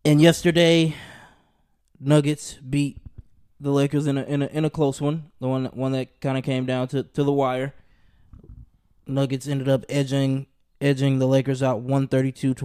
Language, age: English, 20-39